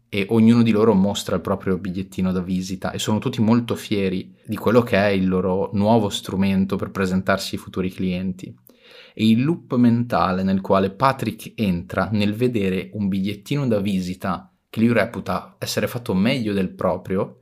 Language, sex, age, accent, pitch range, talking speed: Italian, male, 30-49, native, 95-115 Hz, 170 wpm